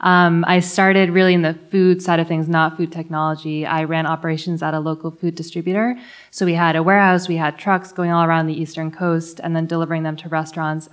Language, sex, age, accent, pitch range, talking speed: English, female, 20-39, American, 160-180 Hz, 225 wpm